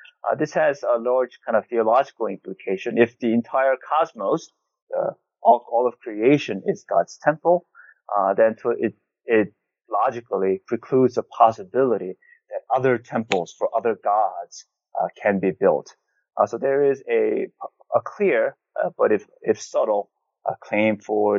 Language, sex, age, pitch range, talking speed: English, male, 30-49, 105-145 Hz, 155 wpm